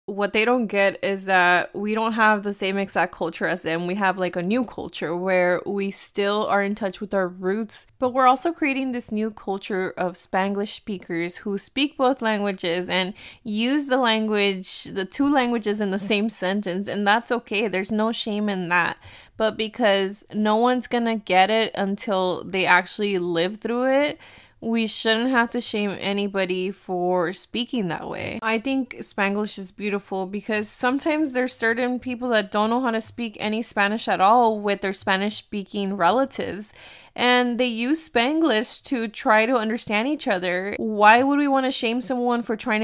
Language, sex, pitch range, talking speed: English, female, 195-235 Hz, 180 wpm